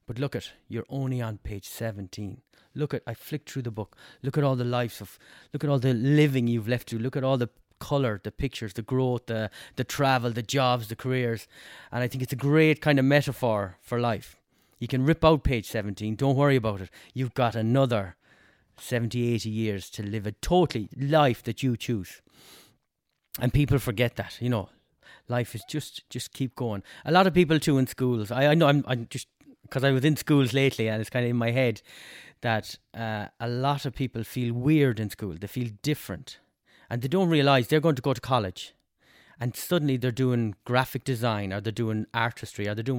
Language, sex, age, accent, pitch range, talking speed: English, male, 30-49, Irish, 110-140 Hz, 215 wpm